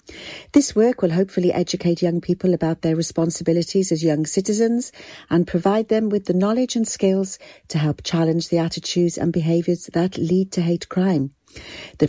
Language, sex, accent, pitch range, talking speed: English, female, British, 155-200 Hz, 170 wpm